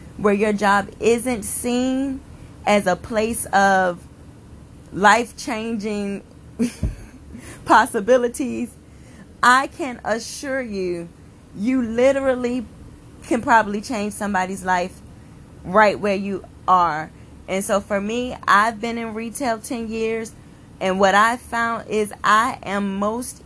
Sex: female